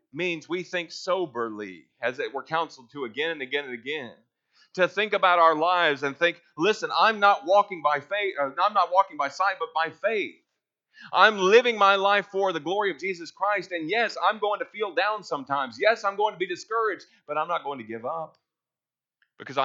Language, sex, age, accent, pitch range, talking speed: English, male, 30-49, American, 115-185 Hz, 205 wpm